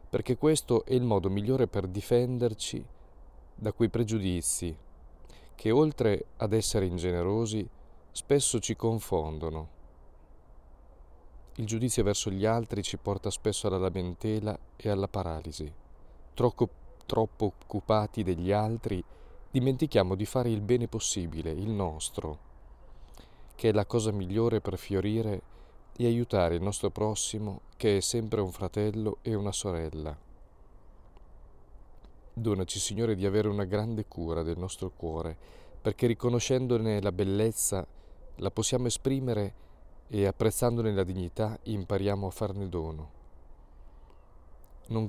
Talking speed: 120 wpm